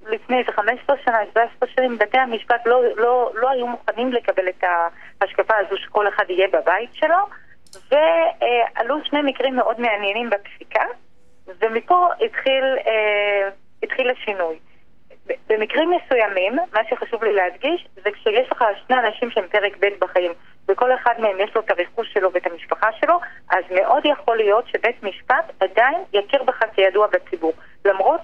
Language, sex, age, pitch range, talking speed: Hebrew, female, 30-49, 200-265 Hz, 150 wpm